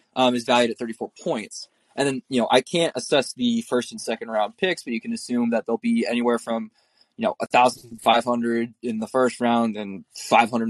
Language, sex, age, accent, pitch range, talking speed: English, male, 20-39, American, 115-130 Hz, 210 wpm